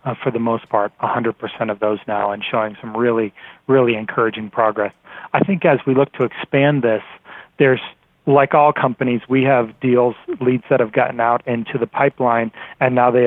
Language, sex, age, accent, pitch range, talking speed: English, male, 40-59, American, 120-140 Hz, 190 wpm